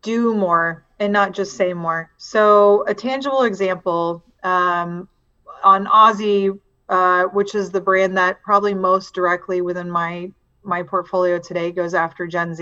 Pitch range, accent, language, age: 175-205 Hz, American, English, 30-49